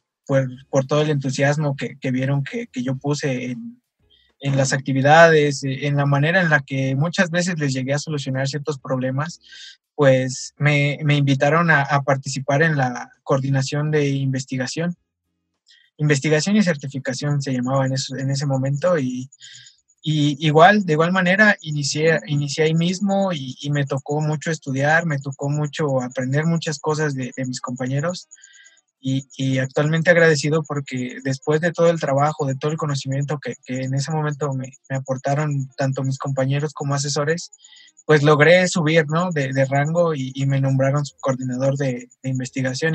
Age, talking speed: 20-39, 170 wpm